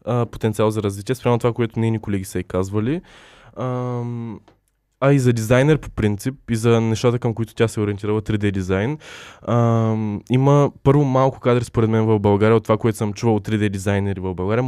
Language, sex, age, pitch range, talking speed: Bulgarian, male, 20-39, 105-125 Hz, 190 wpm